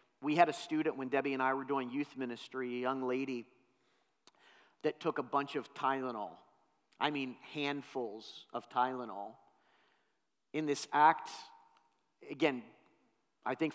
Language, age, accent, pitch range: English, 40-59, American, 130-150 Hz